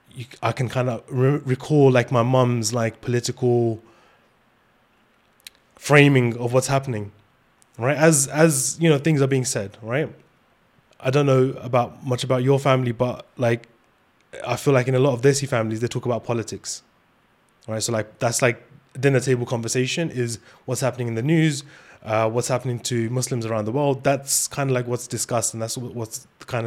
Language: English